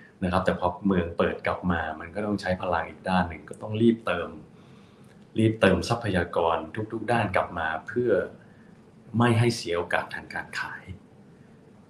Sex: male